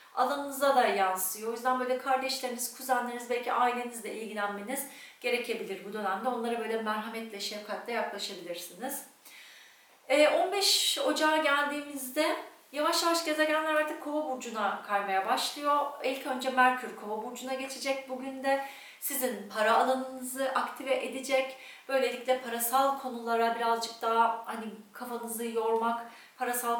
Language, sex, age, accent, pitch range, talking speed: Turkish, female, 40-59, native, 215-280 Hz, 115 wpm